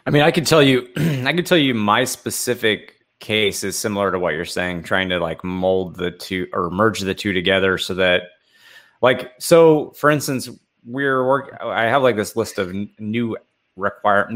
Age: 30-49